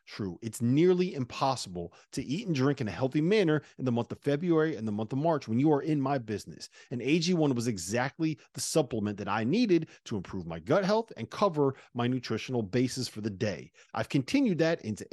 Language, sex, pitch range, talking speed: English, male, 115-170 Hz, 215 wpm